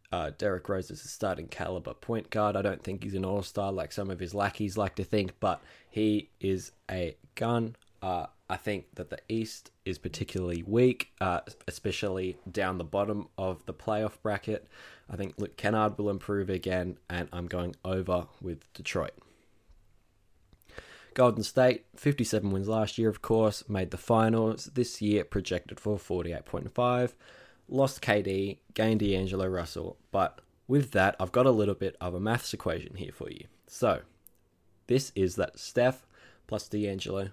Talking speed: 160 wpm